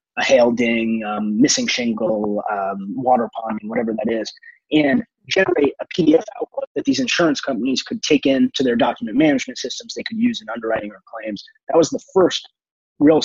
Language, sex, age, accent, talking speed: English, male, 20-39, American, 180 wpm